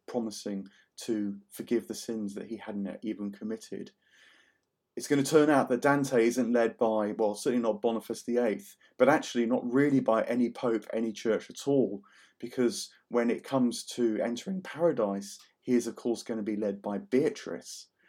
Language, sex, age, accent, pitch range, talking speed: English, male, 30-49, British, 110-130 Hz, 175 wpm